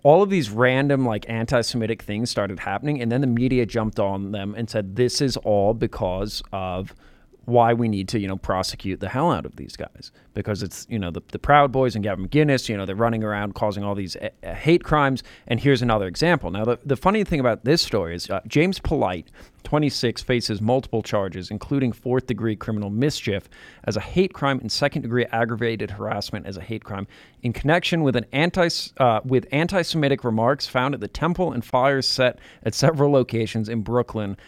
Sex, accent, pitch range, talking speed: male, American, 105-140 Hz, 200 wpm